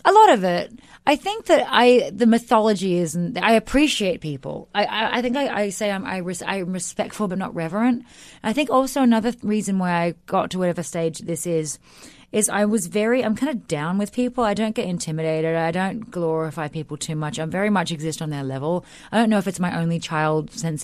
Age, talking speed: 30-49, 230 wpm